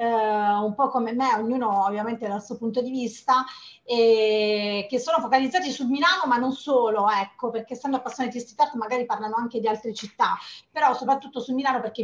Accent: native